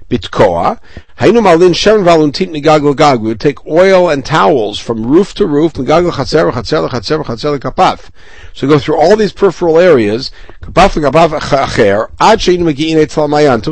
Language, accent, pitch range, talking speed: English, American, 125-160 Hz, 150 wpm